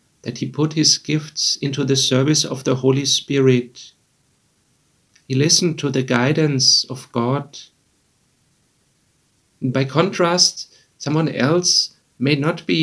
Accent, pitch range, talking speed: German, 130-155 Hz, 120 wpm